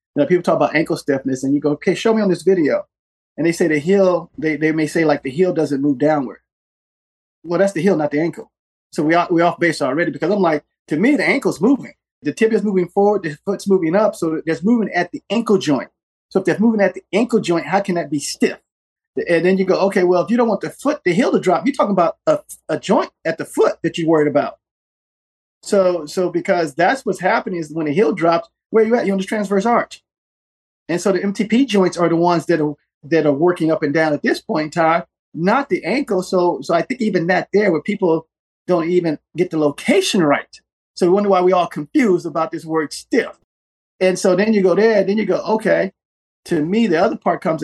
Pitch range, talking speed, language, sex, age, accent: 160-195 Hz, 245 wpm, English, male, 30-49, American